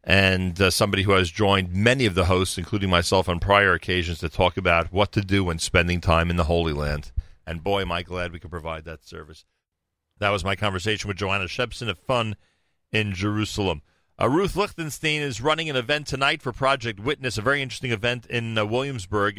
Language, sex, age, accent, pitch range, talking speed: English, male, 40-59, American, 90-110 Hz, 205 wpm